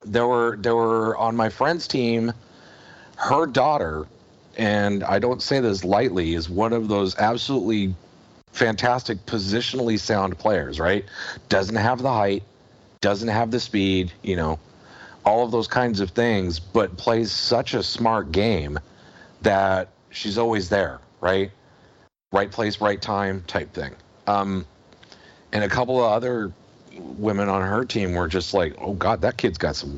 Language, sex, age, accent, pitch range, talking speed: English, male, 40-59, American, 95-115 Hz, 155 wpm